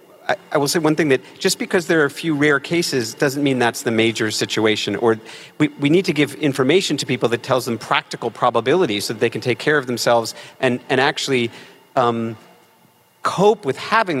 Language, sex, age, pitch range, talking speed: English, male, 40-59, 120-155 Hz, 210 wpm